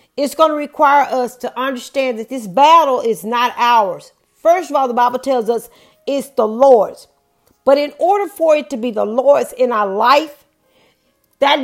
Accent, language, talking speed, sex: American, English, 185 wpm, female